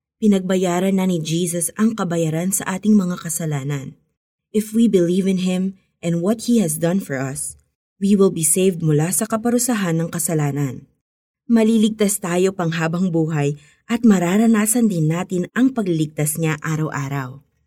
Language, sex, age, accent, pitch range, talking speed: Filipino, female, 20-39, native, 155-205 Hz, 150 wpm